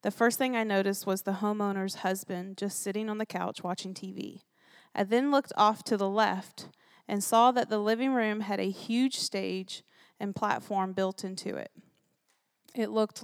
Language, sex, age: English, female, 20-39